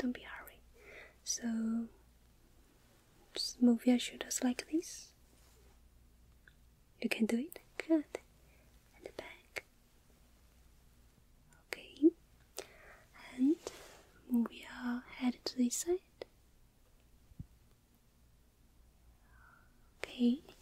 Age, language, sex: 20-39, English, female